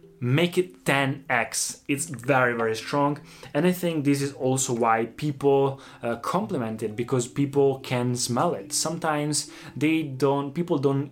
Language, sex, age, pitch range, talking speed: Italian, male, 20-39, 120-145 Hz, 150 wpm